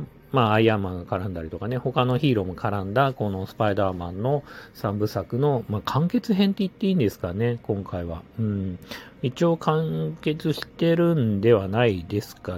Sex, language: male, Japanese